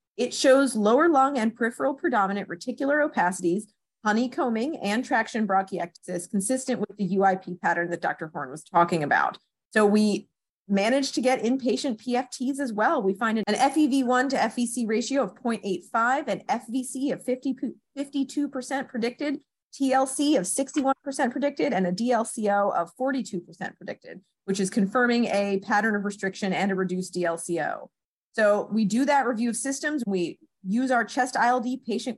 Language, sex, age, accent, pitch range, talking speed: English, female, 30-49, American, 200-265 Hz, 150 wpm